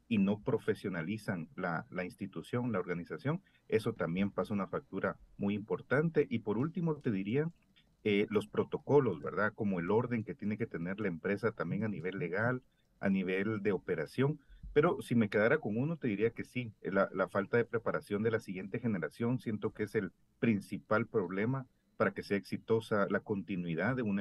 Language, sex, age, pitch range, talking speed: Spanish, male, 40-59, 105-135 Hz, 185 wpm